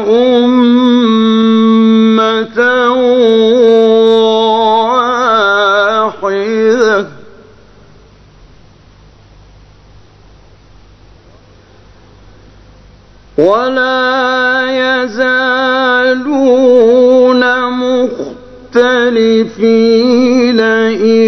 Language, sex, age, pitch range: Persian, male, 40-59, 200-245 Hz